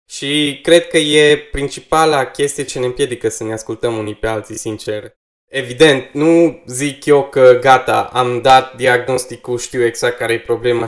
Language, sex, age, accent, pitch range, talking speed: Romanian, male, 20-39, native, 115-145 Hz, 165 wpm